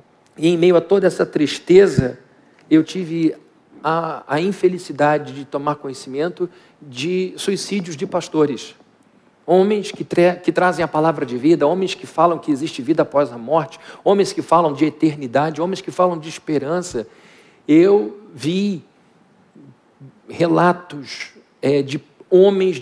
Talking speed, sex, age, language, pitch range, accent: 140 wpm, male, 50-69, Portuguese, 145-180 Hz, Brazilian